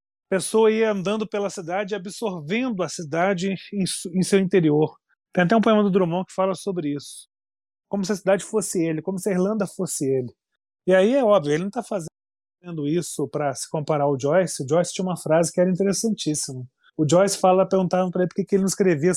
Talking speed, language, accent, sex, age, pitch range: 210 wpm, Portuguese, Brazilian, male, 30-49, 170-225 Hz